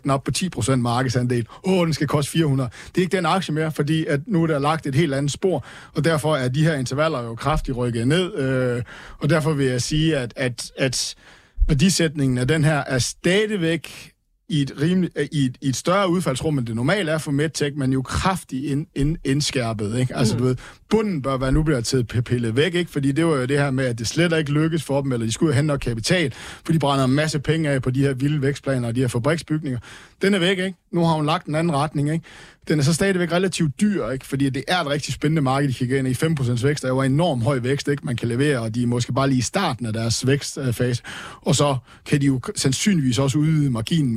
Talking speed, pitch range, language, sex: 245 wpm, 130-160 Hz, Danish, male